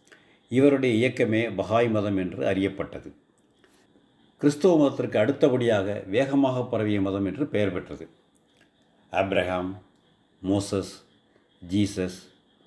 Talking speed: 85 wpm